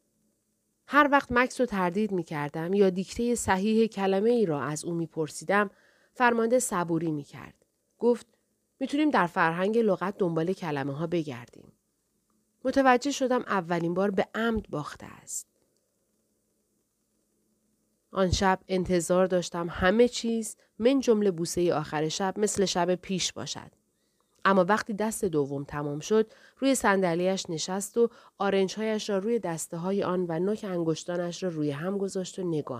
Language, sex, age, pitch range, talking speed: Persian, female, 30-49, 165-215 Hz, 135 wpm